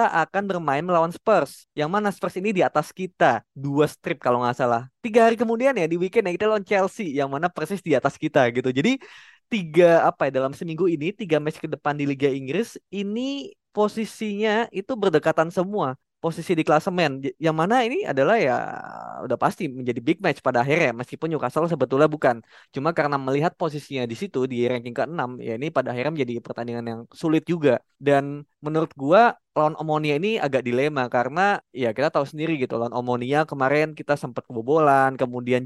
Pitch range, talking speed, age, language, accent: 135-175 Hz, 185 wpm, 20-39, Indonesian, native